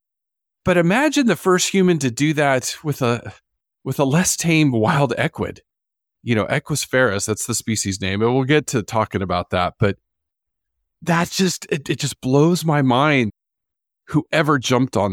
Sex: male